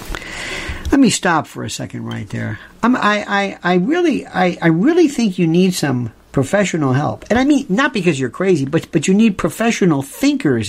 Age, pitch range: 50-69, 135-190 Hz